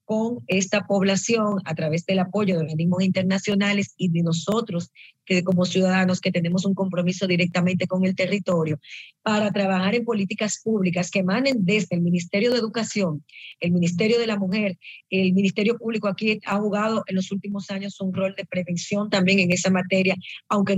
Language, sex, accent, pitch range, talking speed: English, female, American, 175-200 Hz, 175 wpm